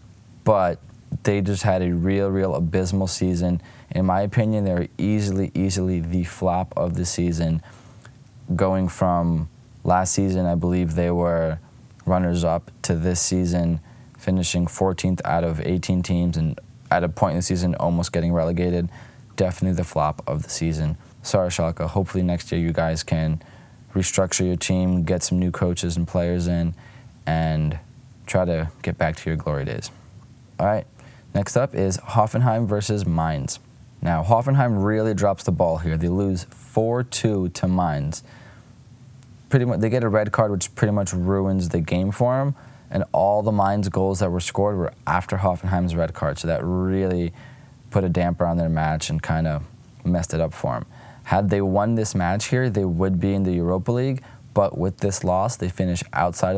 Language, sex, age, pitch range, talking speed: English, male, 20-39, 85-110 Hz, 175 wpm